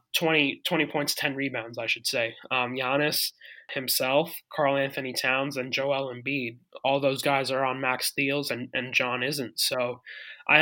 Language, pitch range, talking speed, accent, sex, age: English, 130-145 Hz, 170 wpm, American, male, 20-39